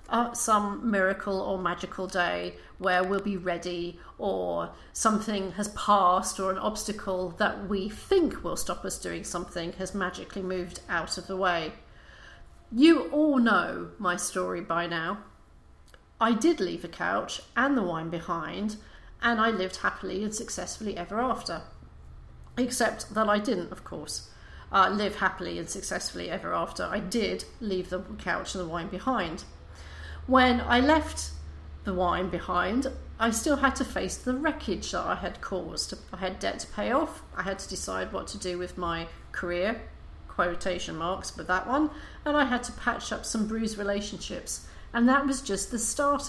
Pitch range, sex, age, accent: 175-230 Hz, female, 40-59, British